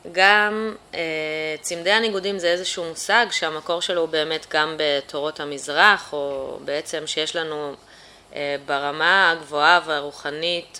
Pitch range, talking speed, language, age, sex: 150-185 Hz, 110 wpm, Hebrew, 20-39, female